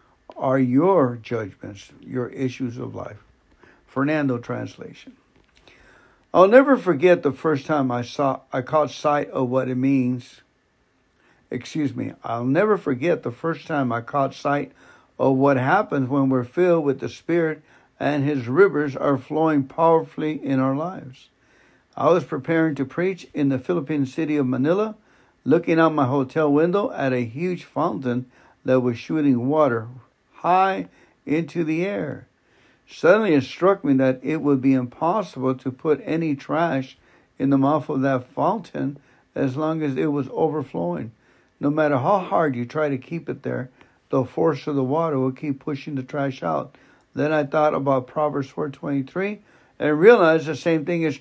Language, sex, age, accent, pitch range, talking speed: English, male, 60-79, American, 130-160 Hz, 165 wpm